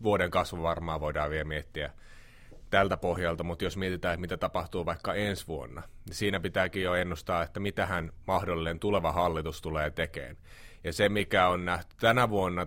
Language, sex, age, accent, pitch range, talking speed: Finnish, male, 30-49, native, 85-100 Hz, 165 wpm